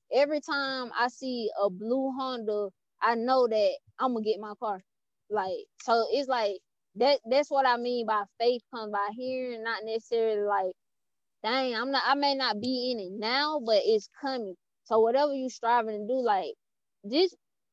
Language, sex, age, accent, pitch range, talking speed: English, female, 10-29, American, 210-265 Hz, 180 wpm